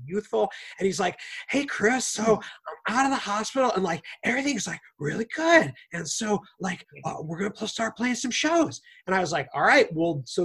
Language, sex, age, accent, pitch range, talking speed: English, male, 30-49, American, 145-205 Hz, 205 wpm